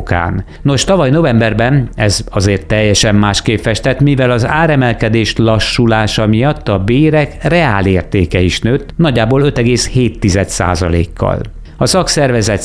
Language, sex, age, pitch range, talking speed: Hungarian, male, 50-69, 105-125 Hz, 110 wpm